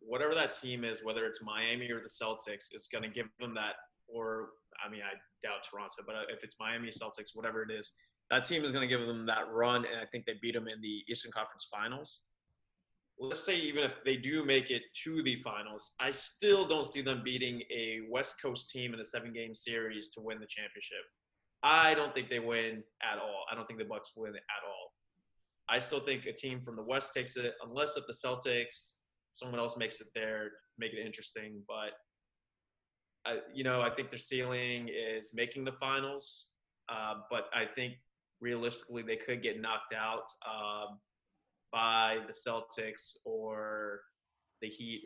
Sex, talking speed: male, 190 wpm